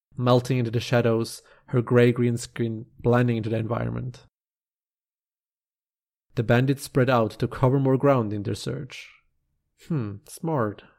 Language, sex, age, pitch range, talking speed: English, male, 30-49, 115-130 Hz, 130 wpm